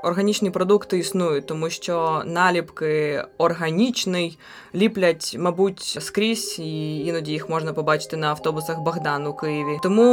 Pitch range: 165-215 Hz